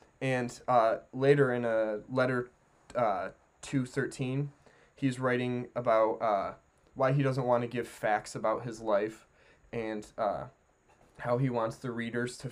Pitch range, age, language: 115-130 Hz, 20-39, English